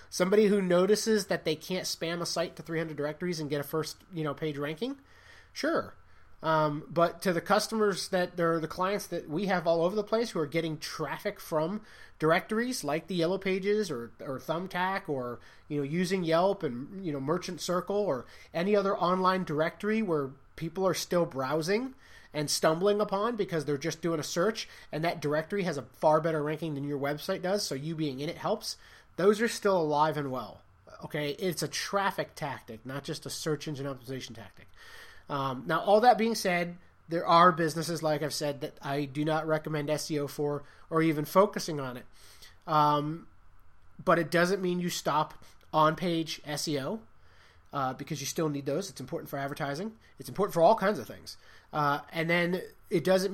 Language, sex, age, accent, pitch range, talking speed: English, male, 30-49, American, 150-185 Hz, 190 wpm